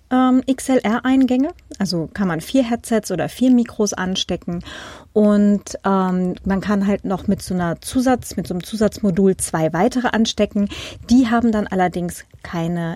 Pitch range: 180-235 Hz